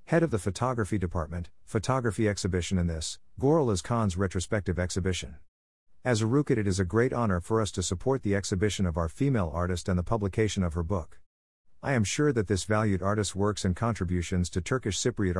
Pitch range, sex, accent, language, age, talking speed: 90-110 Hz, male, American, English, 50-69, 195 wpm